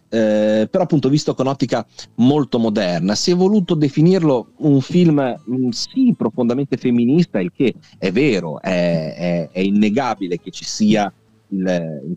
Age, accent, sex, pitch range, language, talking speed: 30-49, native, male, 105-145 Hz, Italian, 150 wpm